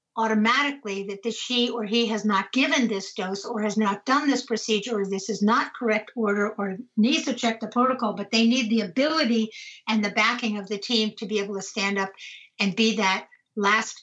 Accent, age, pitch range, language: American, 60-79, 210-240 Hz, English